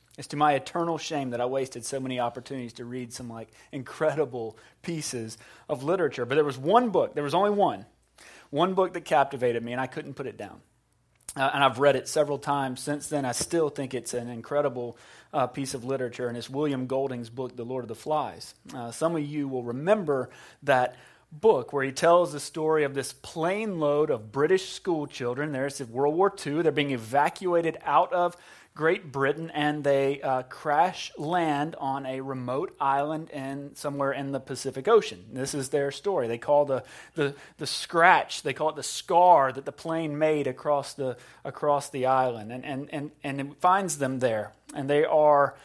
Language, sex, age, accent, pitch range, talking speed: English, male, 30-49, American, 130-160 Hz, 195 wpm